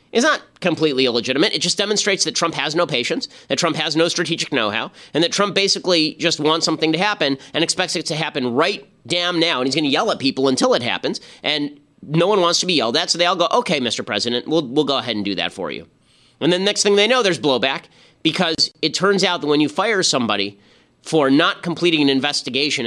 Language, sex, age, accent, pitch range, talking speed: English, male, 30-49, American, 130-170 Hz, 235 wpm